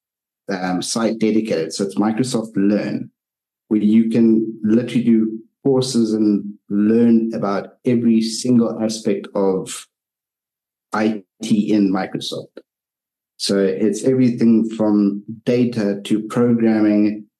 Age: 50-69